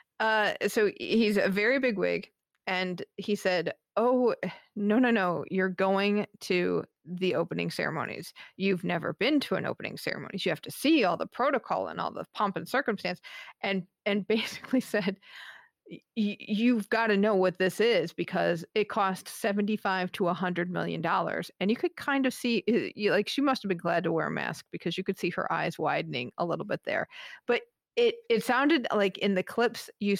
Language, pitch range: English, 180-225 Hz